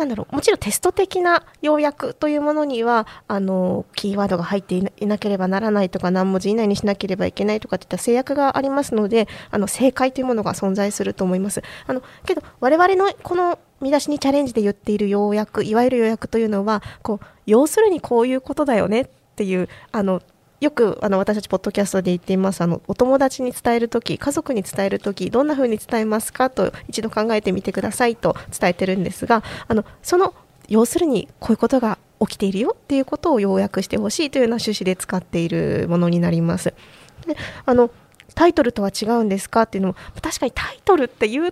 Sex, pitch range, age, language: female, 200-270 Hz, 20-39, Japanese